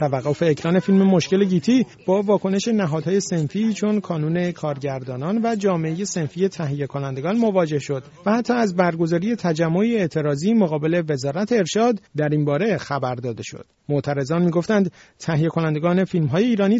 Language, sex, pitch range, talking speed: Persian, male, 145-190 Hz, 145 wpm